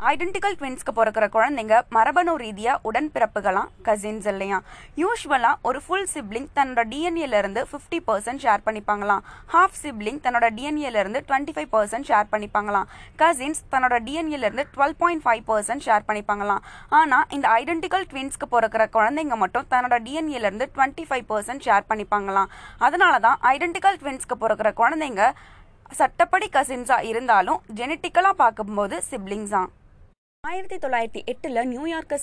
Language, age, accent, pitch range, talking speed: Tamil, 20-39, native, 220-295 Hz, 115 wpm